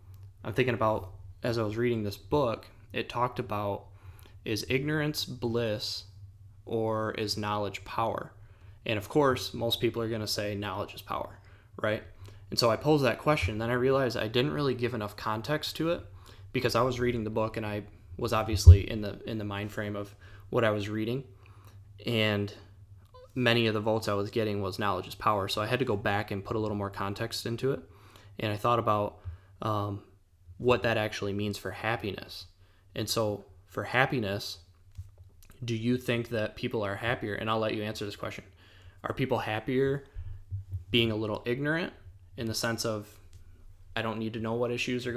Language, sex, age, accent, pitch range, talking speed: English, male, 20-39, American, 100-115 Hz, 190 wpm